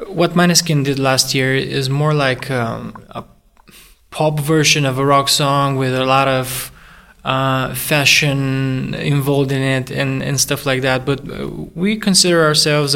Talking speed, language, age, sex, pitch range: 160 wpm, English, 20-39, male, 130-150 Hz